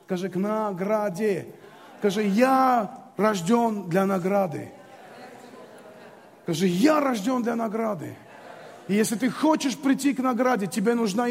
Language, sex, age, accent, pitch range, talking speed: Russian, male, 30-49, native, 215-275 Hz, 115 wpm